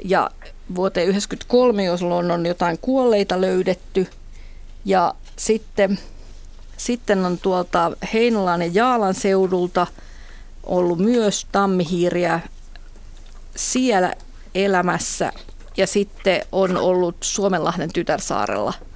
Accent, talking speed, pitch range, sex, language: native, 80 wpm, 180-225 Hz, female, Finnish